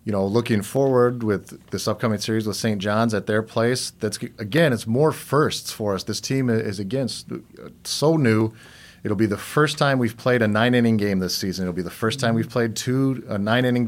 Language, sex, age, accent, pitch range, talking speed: English, male, 40-59, American, 105-125 Hz, 210 wpm